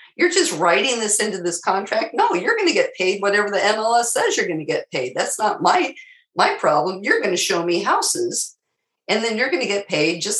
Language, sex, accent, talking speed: English, female, American, 235 wpm